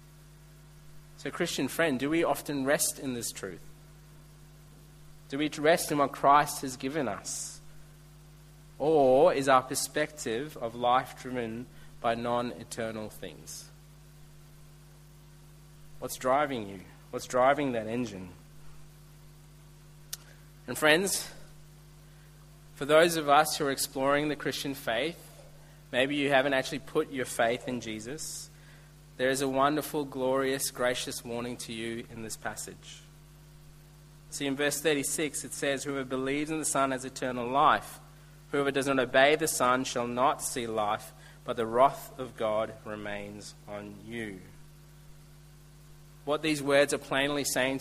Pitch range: 130-150 Hz